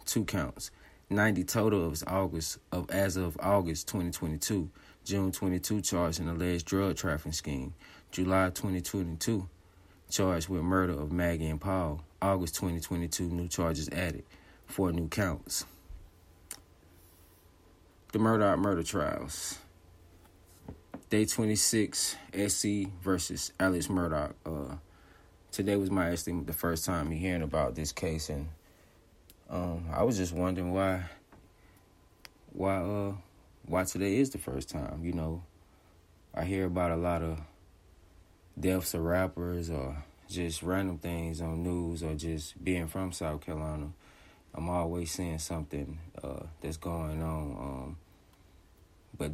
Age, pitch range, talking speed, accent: 30-49, 80-95 Hz, 140 wpm, American